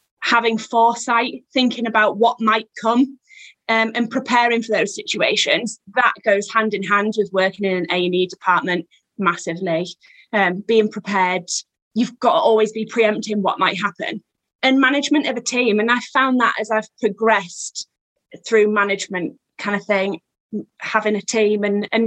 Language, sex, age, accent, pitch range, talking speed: English, female, 20-39, British, 205-275 Hz, 160 wpm